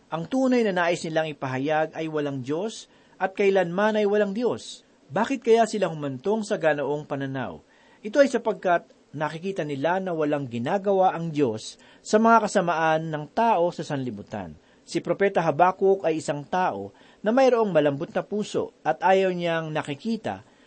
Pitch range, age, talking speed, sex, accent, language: 155-215 Hz, 40-59, 155 wpm, male, native, Filipino